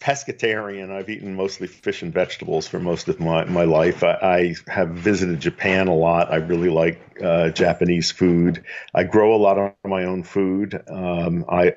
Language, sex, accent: English, male, American